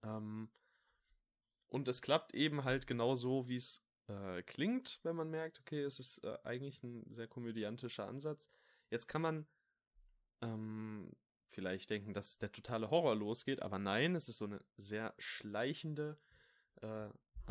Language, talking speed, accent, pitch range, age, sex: German, 145 wpm, German, 110-145 Hz, 10-29, male